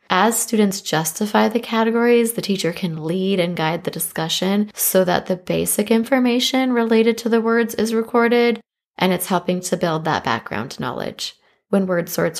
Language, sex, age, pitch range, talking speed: English, female, 20-39, 175-220 Hz, 170 wpm